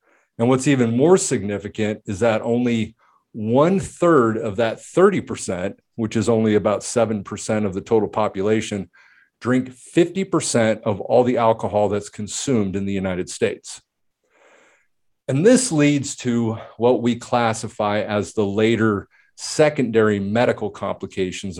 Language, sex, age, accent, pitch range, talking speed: English, male, 50-69, American, 105-125 Hz, 130 wpm